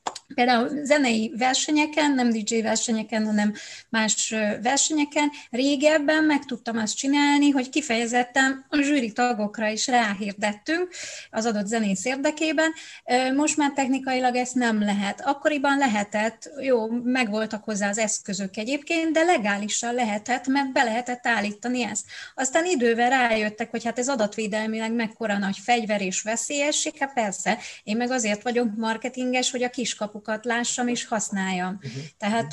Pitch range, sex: 215-270 Hz, female